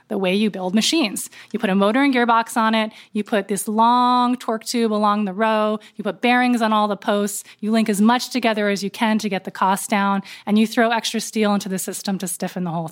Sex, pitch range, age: female, 205-240 Hz, 20-39